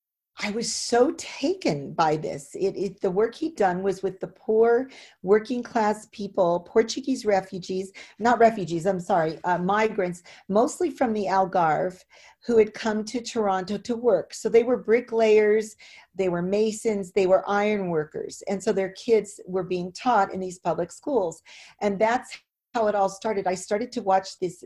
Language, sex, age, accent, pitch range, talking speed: English, female, 40-59, American, 185-230 Hz, 170 wpm